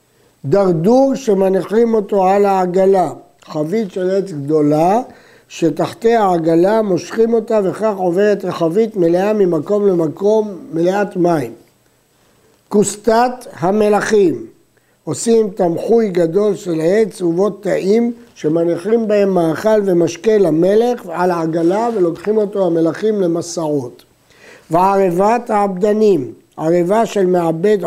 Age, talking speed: 60-79, 100 wpm